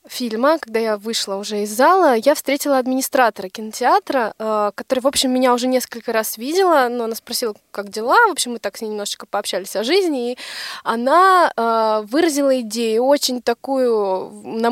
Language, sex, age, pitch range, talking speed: Russian, female, 20-39, 220-270 Hz, 165 wpm